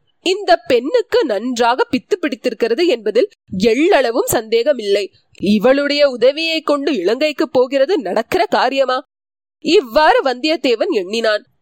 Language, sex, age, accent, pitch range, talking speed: Tamil, female, 20-39, native, 270-415 Hz, 85 wpm